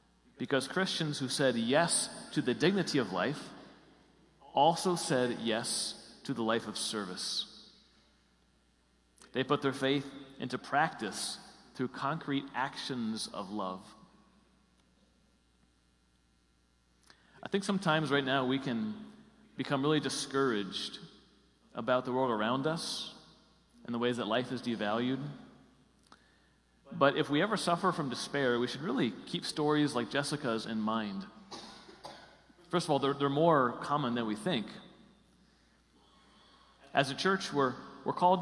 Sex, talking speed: male, 130 wpm